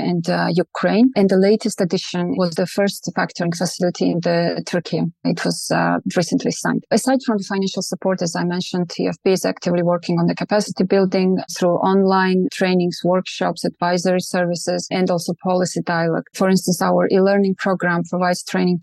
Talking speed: 170 wpm